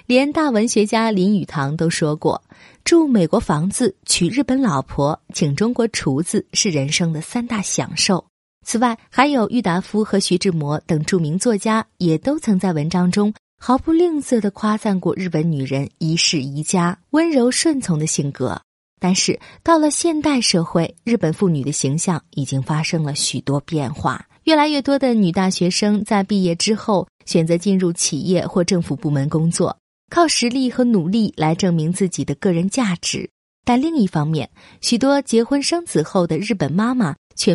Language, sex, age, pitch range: Chinese, female, 30-49, 160-230 Hz